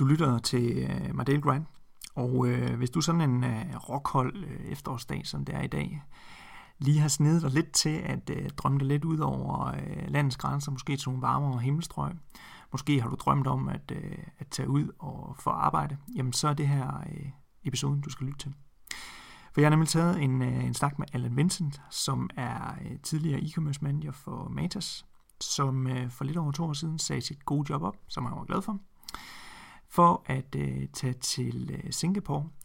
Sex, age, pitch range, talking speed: male, 30-49, 125-155 Hz, 200 wpm